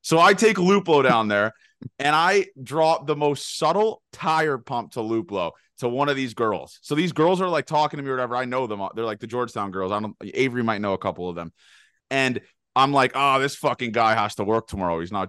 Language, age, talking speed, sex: English, 30-49, 240 wpm, male